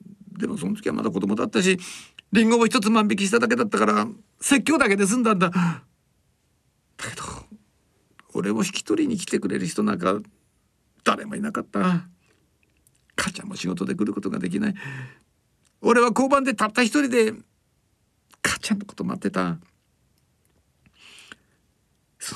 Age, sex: 60-79, male